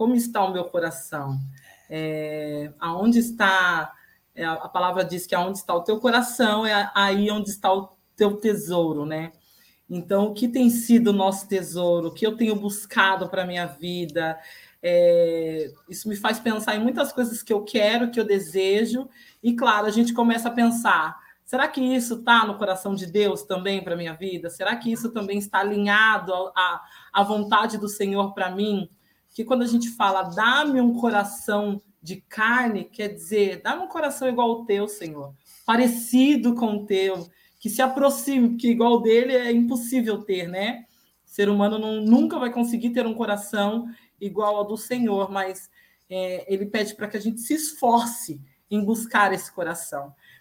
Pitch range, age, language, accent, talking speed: 190-235 Hz, 20-39, Portuguese, Brazilian, 180 wpm